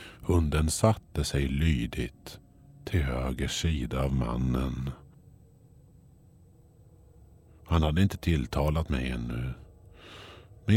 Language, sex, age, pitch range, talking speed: Swedish, male, 50-69, 70-105 Hz, 90 wpm